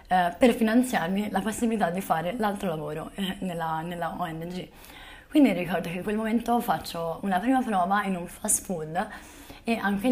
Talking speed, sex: 160 wpm, female